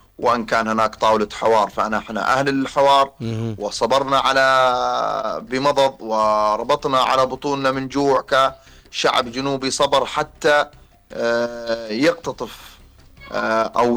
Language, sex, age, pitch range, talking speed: Arabic, male, 30-49, 110-125 Hz, 90 wpm